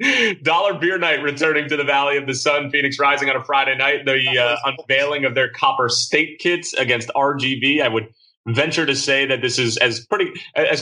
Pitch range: 120-150 Hz